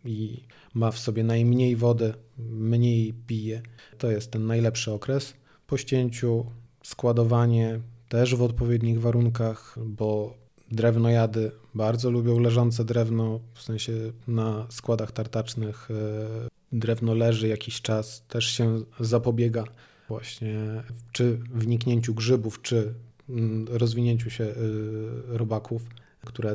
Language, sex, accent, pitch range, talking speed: Polish, male, native, 110-120 Hz, 115 wpm